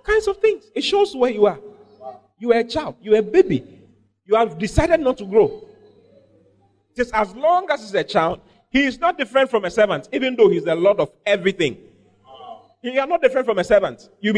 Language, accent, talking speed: English, Nigerian, 210 wpm